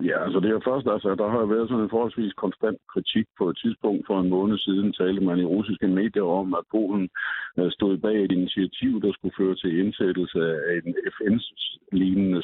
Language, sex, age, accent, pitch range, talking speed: Danish, male, 60-79, native, 85-105 Hz, 205 wpm